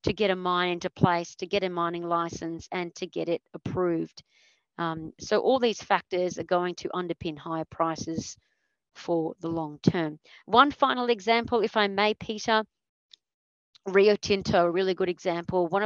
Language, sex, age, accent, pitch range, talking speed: English, female, 40-59, Australian, 175-215 Hz, 170 wpm